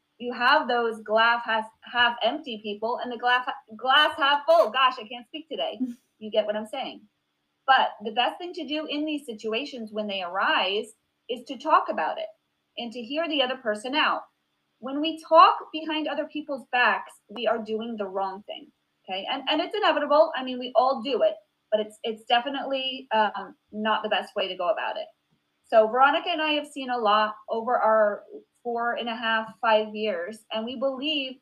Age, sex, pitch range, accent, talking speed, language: 30-49, female, 225-300 Hz, American, 200 wpm, English